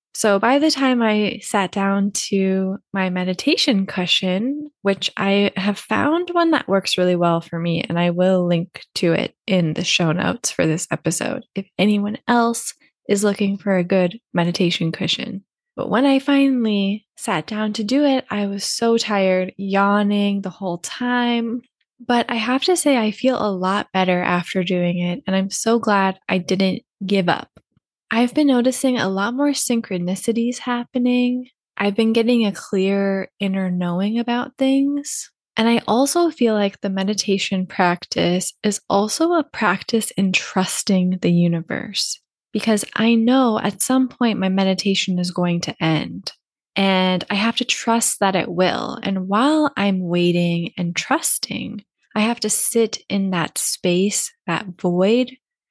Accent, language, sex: American, English, female